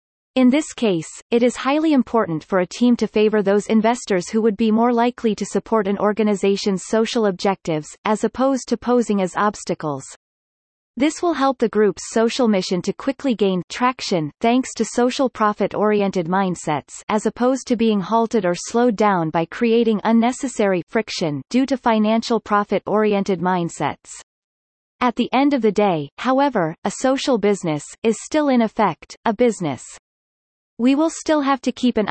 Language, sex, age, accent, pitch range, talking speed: English, female, 30-49, American, 190-245 Hz, 165 wpm